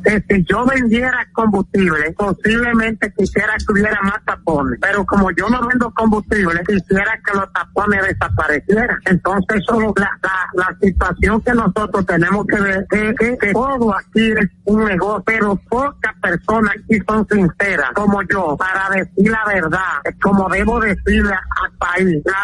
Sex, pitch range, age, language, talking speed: male, 190-220 Hz, 50-69, Spanish, 150 wpm